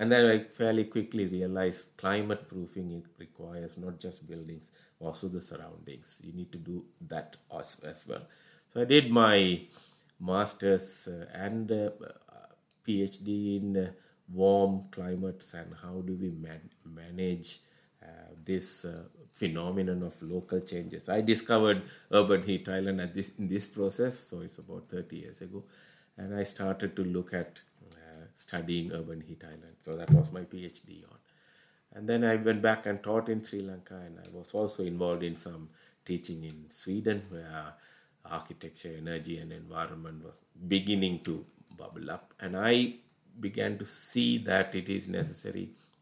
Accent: Indian